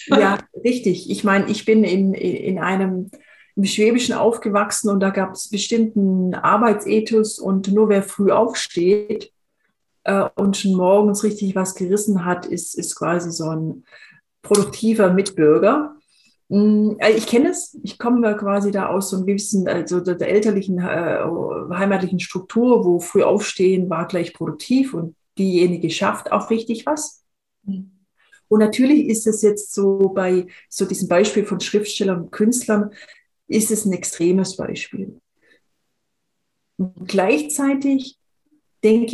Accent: German